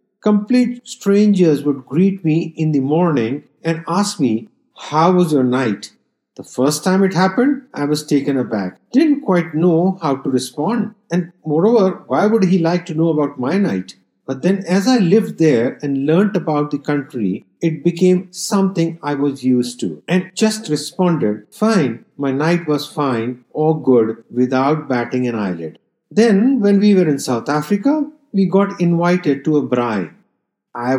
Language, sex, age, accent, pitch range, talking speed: English, male, 50-69, Indian, 135-190 Hz, 170 wpm